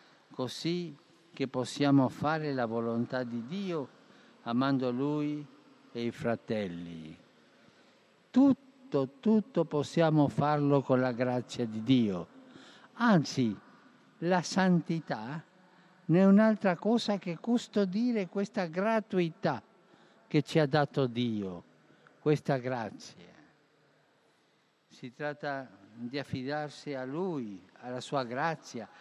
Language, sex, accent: Italian, male, native